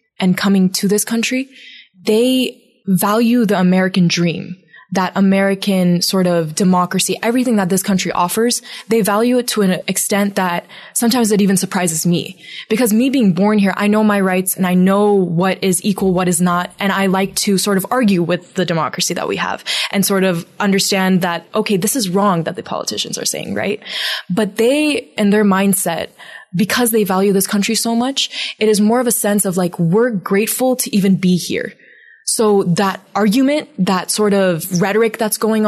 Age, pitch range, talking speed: 20-39, 185-215 Hz, 190 wpm